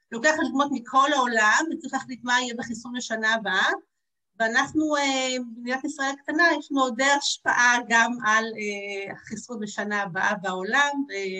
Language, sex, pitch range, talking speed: Hebrew, female, 215-270 Hz, 125 wpm